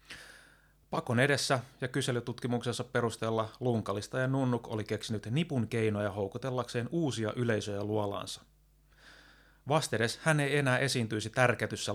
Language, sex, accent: Finnish, male, native